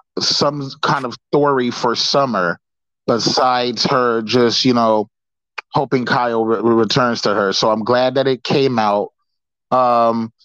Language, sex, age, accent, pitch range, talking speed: English, male, 30-49, American, 130-170 Hz, 140 wpm